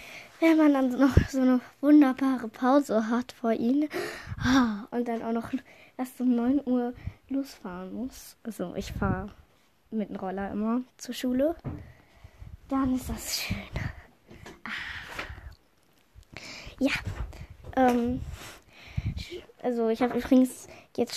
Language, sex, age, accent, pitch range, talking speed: German, female, 10-29, German, 225-265 Hz, 120 wpm